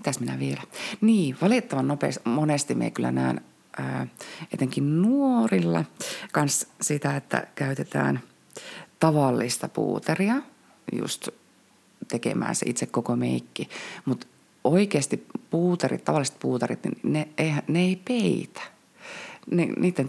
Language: Finnish